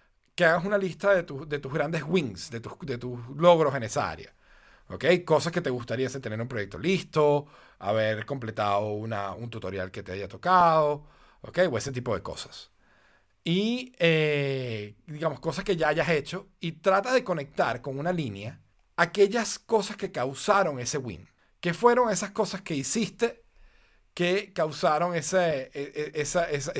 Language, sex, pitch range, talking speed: Spanish, male, 140-190 Hz, 170 wpm